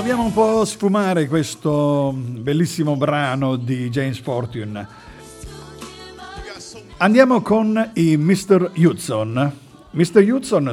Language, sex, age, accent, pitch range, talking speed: Italian, male, 50-69, native, 130-175 Hz, 100 wpm